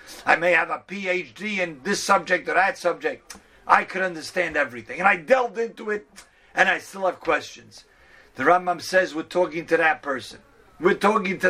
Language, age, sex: English, 50-69, male